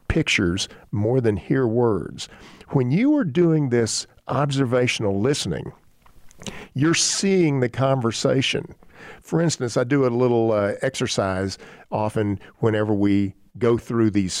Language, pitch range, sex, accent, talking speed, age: English, 105-135 Hz, male, American, 125 wpm, 50-69